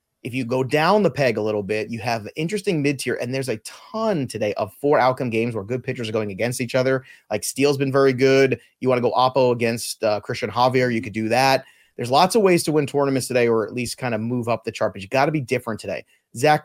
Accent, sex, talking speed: American, male, 265 wpm